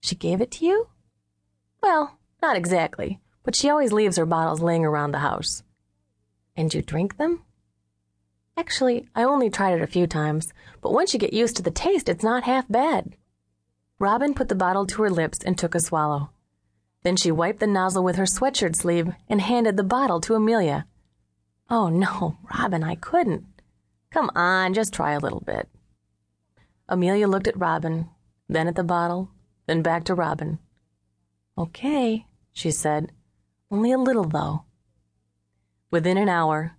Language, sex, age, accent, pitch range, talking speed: English, female, 30-49, American, 155-215 Hz, 165 wpm